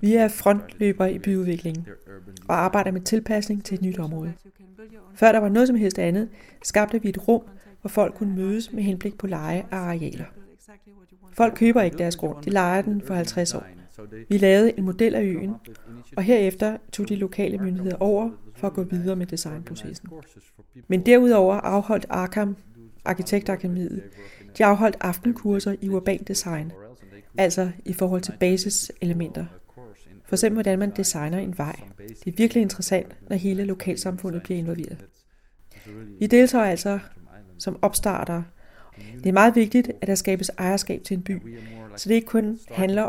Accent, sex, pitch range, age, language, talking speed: native, female, 170-205 Hz, 30-49, Danish, 160 wpm